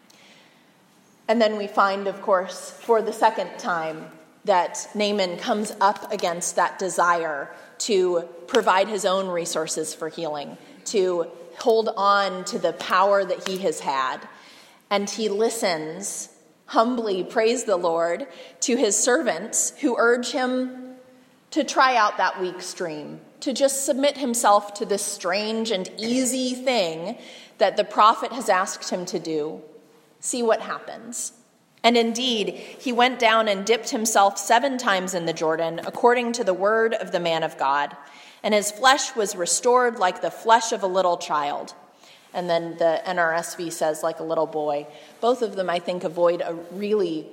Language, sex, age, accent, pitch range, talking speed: English, female, 30-49, American, 175-235 Hz, 160 wpm